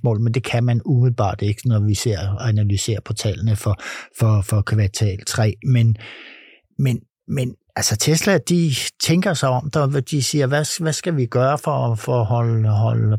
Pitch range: 110-130 Hz